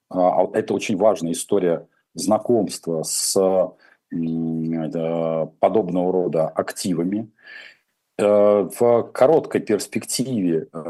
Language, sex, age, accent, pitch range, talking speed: Russian, male, 40-59, native, 85-110 Hz, 65 wpm